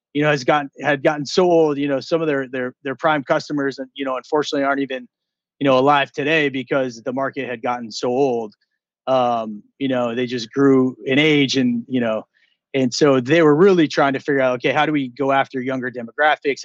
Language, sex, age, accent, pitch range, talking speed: English, male, 30-49, American, 125-150 Hz, 225 wpm